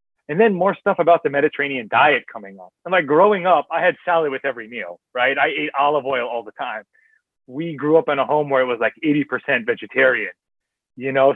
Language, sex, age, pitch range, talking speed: English, male, 30-49, 125-165 Hz, 225 wpm